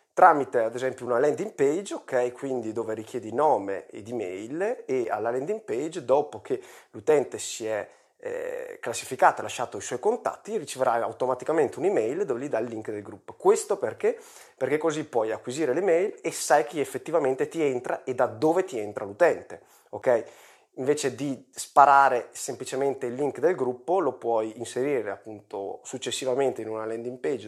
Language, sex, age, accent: Italian, male, 30-49, native